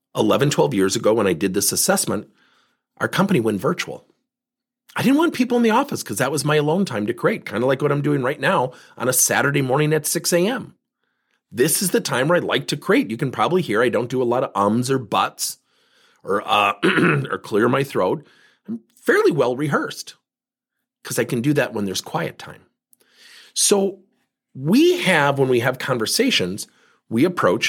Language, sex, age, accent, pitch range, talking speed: English, male, 40-59, American, 125-200 Hz, 200 wpm